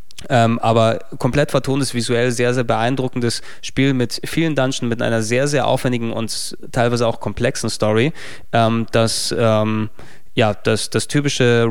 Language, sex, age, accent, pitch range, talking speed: German, male, 20-39, German, 115-130 Hz, 150 wpm